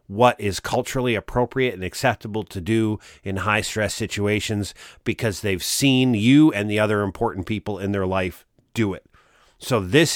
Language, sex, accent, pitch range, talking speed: English, male, American, 105-135 Hz, 160 wpm